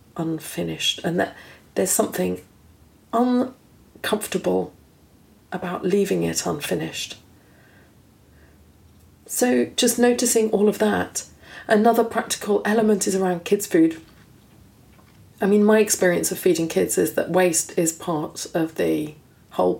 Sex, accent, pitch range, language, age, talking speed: female, British, 160-195 Hz, English, 40-59, 115 wpm